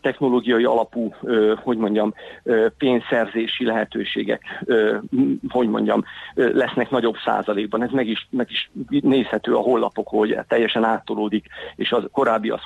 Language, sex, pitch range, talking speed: Hungarian, male, 110-140 Hz, 125 wpm